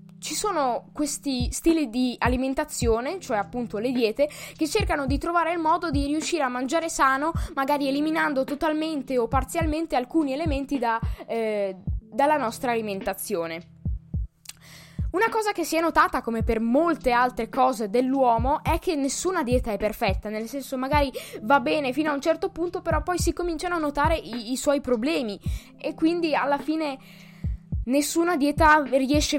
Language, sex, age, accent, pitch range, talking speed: Italian, female, 20-39, native, 235-315 Hz, 155 wpm